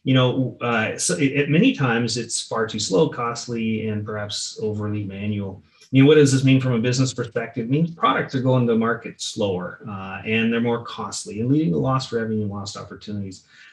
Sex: male